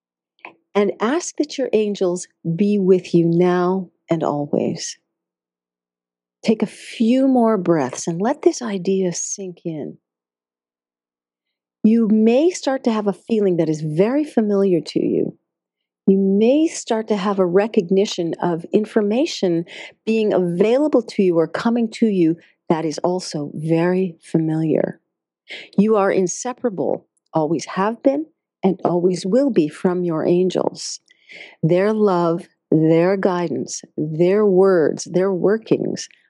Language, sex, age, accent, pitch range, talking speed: English, female, 40-59, American, 160-210 Hz, 130 wpm